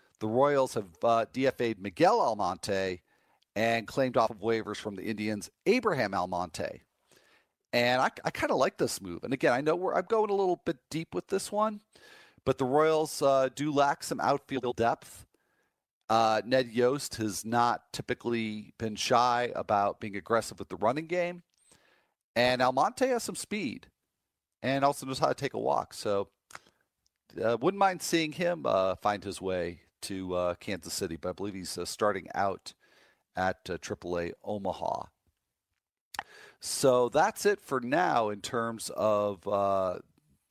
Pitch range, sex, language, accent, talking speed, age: 105-145 Hz, male, English, American, 165 wpm, 40-59